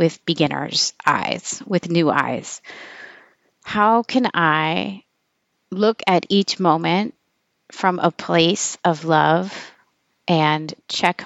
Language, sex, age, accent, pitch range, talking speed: English, female, 30-49, American, 160-190 Hz, 105 wpm